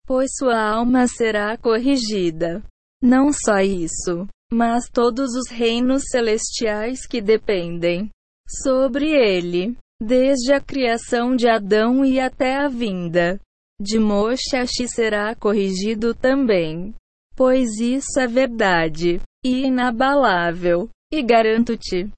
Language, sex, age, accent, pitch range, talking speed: Portuguese, female, 20-39, Brazilian, 200-255 Hz, 105 wpm